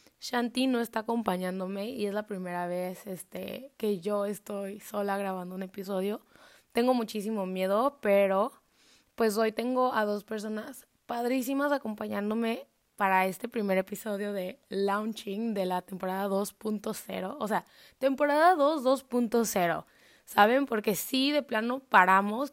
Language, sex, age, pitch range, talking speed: Spanish, female, 20-39, 195-230 Hz, 135 wpm